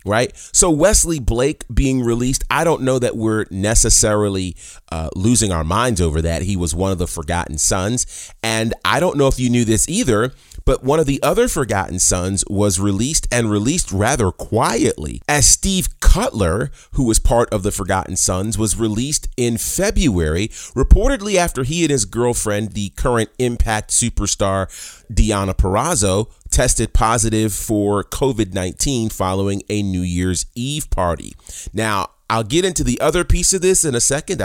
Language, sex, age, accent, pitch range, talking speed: English, male, 30-49, American, 90-125 Hz, 165 wpm